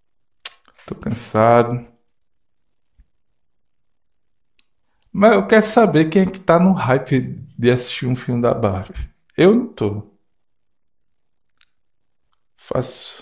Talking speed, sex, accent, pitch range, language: 100 wpm, male, Brazilian, 115-150 Hz, Portuguese